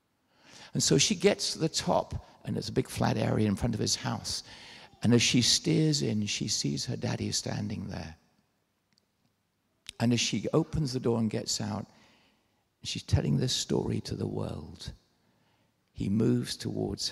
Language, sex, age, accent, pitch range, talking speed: English, male, 60-79, British, 110-150 Hz, 170 wpm